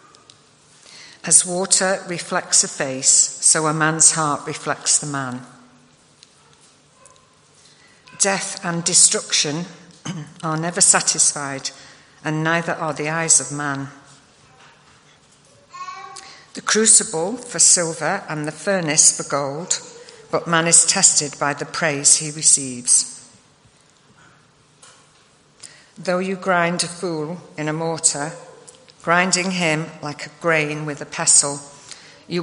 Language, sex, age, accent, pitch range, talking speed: English, female, 50-69, British, 150-180 Hz, 110 wpm